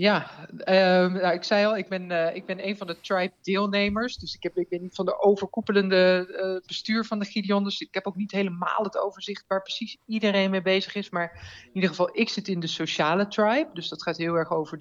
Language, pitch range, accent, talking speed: Dutch, 170-195 Hz, Dutch, 245 wpm